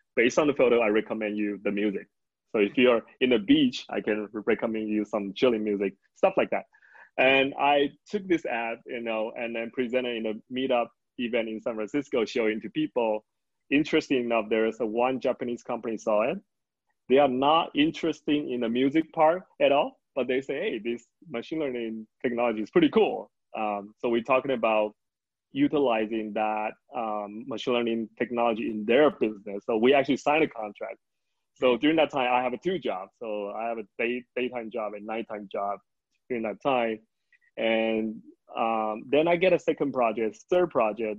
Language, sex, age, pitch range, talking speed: English, male, 20-39, 110-145 Hz, 185 wpm